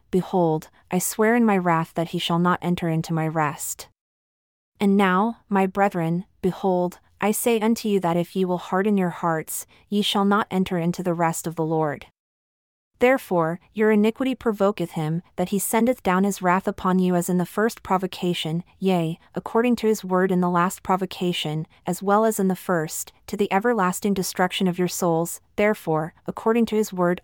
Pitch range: 175-205 Hz